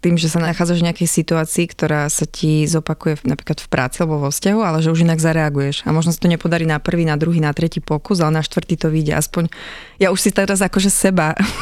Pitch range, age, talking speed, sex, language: 155-175 Hz, 20-39, 245 wpm, female, Slovak